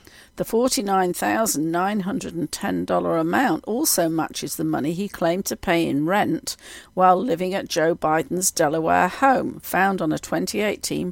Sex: female